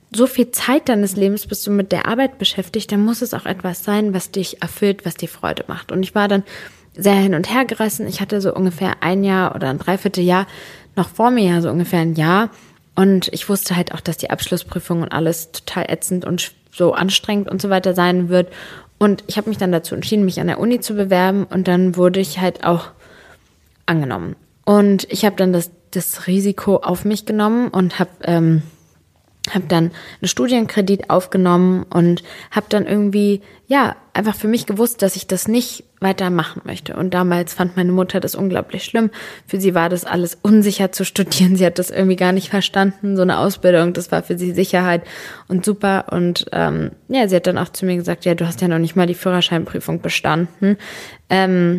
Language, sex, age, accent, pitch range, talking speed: German, female, 20-39, German, 175-205 Hz, 205 wpm